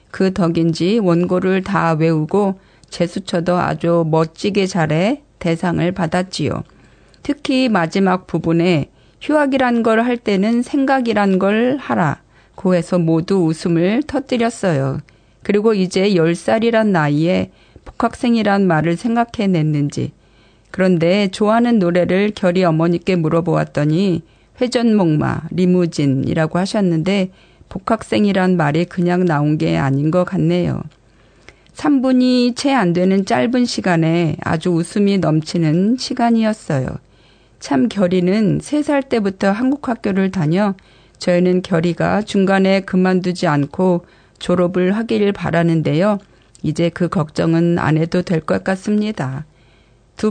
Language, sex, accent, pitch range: Korean, female, native, 165-210 Hz